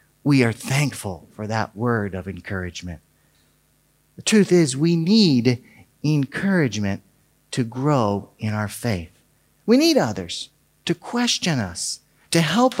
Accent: American